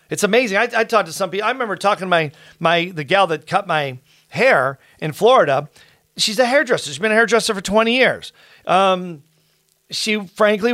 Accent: American